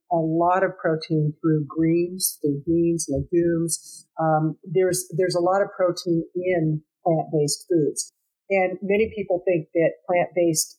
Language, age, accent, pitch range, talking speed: English, 50-69, American, 160-195 Hz, 140 wpm